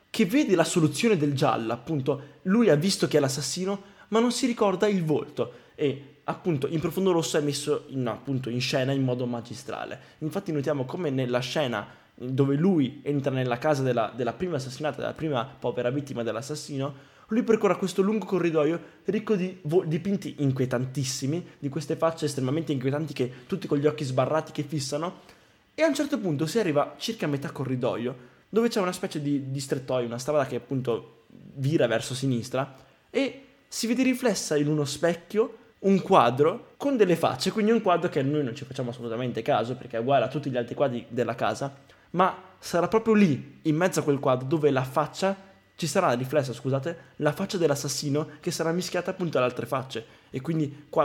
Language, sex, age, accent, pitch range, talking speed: Italian, male, 20-39, native, 135-175 Hz, 190 wpm